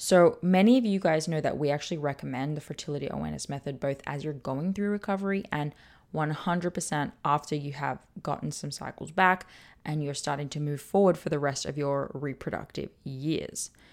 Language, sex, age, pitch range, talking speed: English, female, 10-29, 150-195 Hz, 180 wpm